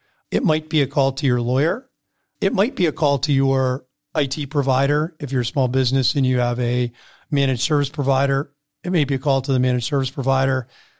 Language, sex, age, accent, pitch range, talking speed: English, male, 40-59, American, 125-145 Hz, 215 wpm